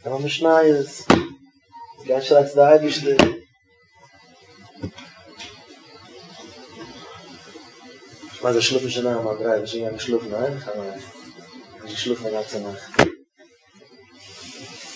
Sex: male